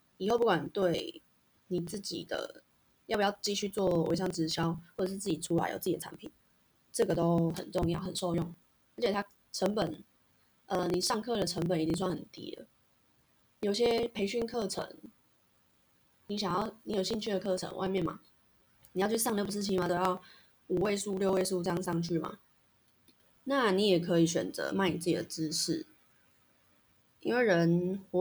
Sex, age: female, 20-39